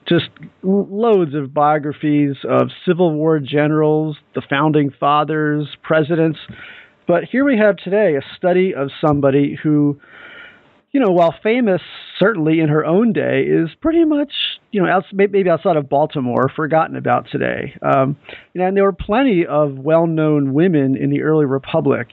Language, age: English, 40-59